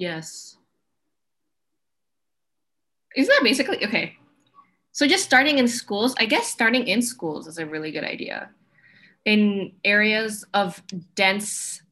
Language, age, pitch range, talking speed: English, 10-29, 180-235 Hz, 120 wpm